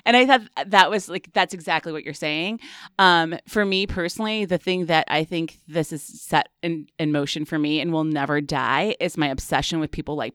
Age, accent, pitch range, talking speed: 30-49, American, 155-190 Hz, 220 wpm